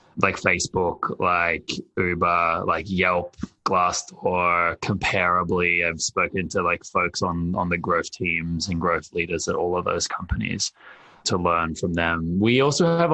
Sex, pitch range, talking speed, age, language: male, 90-110 Hz, 150 wpm, 20-39, English